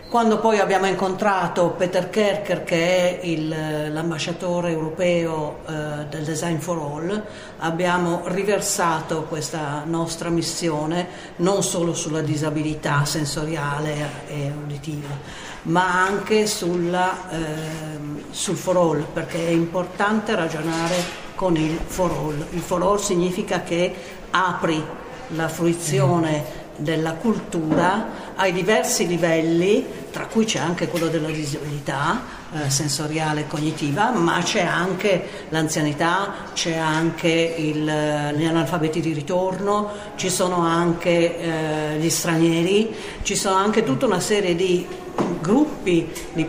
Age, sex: 50-69, female